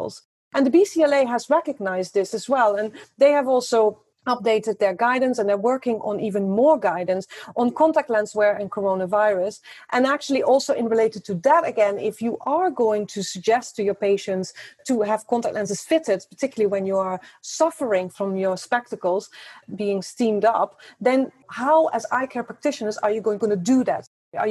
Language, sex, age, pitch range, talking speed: English, female, 30-49, 200-250 Hz, 180 wpm